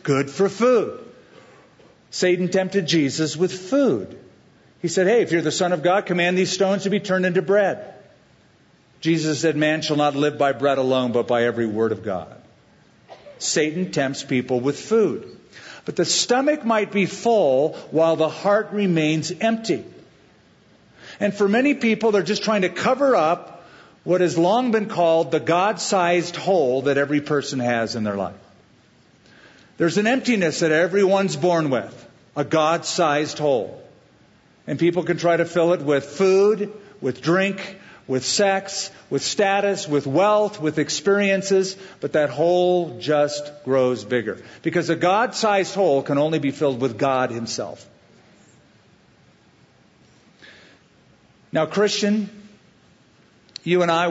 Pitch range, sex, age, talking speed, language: 145-195 Hz, male, 50-69, 145 wpm, English